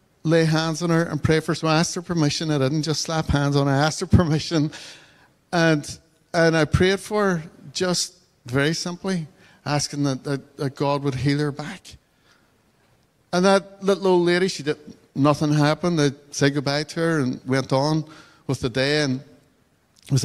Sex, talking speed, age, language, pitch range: male, 185 wpm, 60-79, English, 140-170 Hz